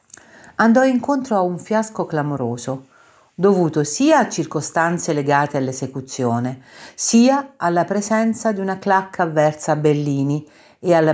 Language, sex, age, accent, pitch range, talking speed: Italian, female, 50-69, native, 135-205 Hz, 125 wpm